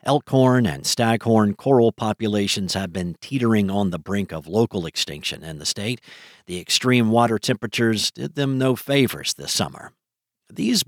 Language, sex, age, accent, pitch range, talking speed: English, male, 50-69, American, 100-130 Hz, 155 wpm